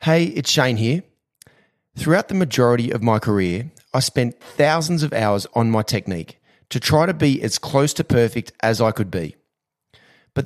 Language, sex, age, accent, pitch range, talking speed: English, male, 30-49, Australian, 110-145 Hz, 180 wpm